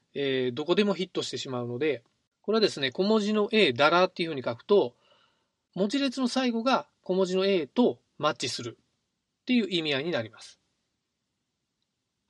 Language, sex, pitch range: Japanese, male, 130-210 Hz